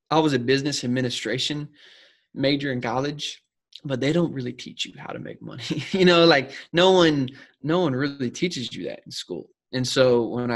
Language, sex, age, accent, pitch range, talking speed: English, male, 20-39, American, 120-145 Hz, 195 wpm